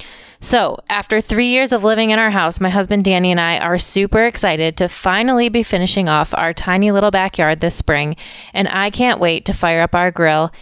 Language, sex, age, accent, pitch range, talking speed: English, female, 20-39, American, 170-215 Hz, 210 wpm